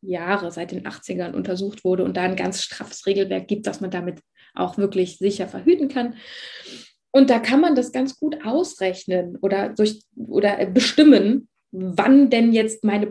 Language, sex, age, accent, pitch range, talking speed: German, female, 20-39, German, 200-255 Hz, 165 wpm